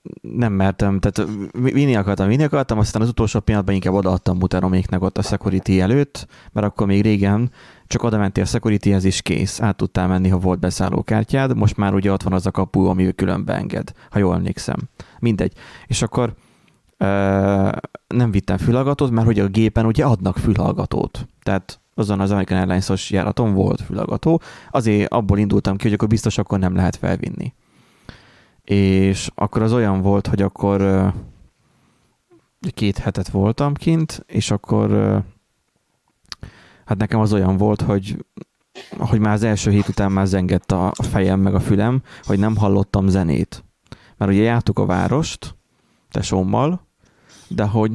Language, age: Hungarian, 30-49